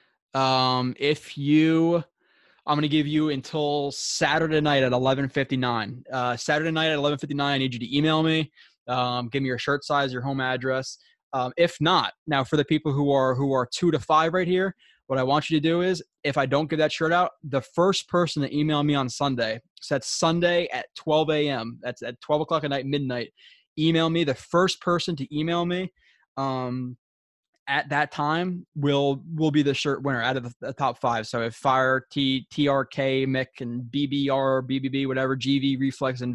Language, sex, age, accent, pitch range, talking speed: English, male, 20-39, American, 130-150 Hz, 205 wpm